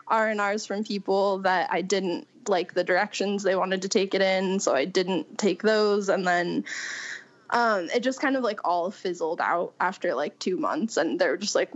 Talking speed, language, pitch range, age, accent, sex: 200 wpm, English, 185-225 Hz, 10-29, American, female